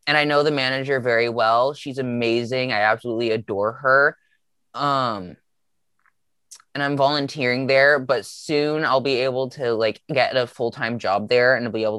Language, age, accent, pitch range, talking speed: English, 20-39, American, 110-145 Hz, 170 wpm